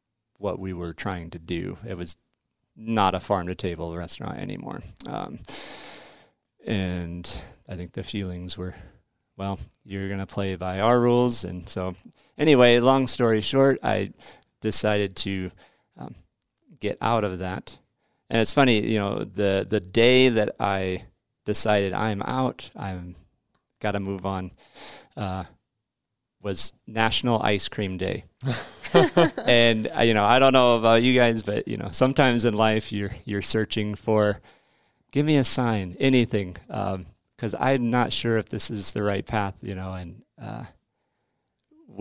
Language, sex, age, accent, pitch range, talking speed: English, male, 40-59, American, 95-115 Hz, 155 wpm